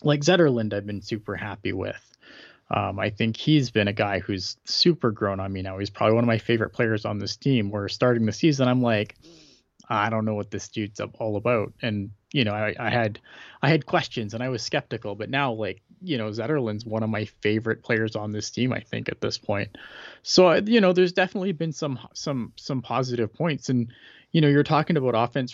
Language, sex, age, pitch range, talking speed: English, male, 20-39, 110-130 Hz, 220 wpm